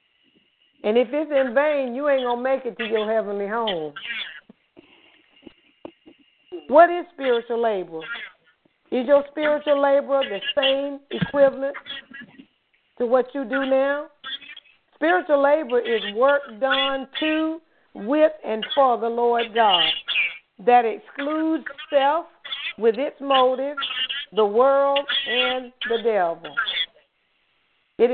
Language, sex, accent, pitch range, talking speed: English, female, American, 225-280 Hz, 115 wpm